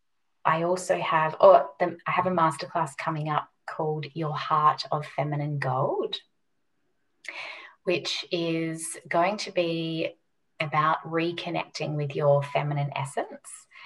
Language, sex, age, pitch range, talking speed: English, female, 20-39, 140-165 Hz, 120 wpm